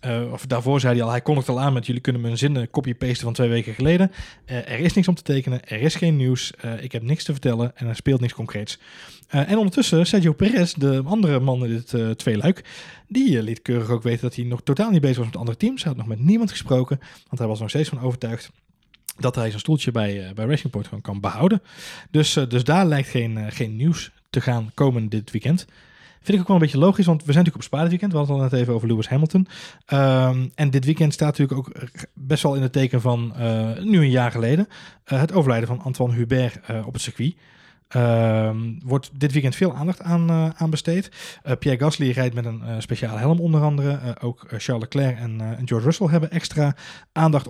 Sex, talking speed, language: male, 245 wpm, Dutch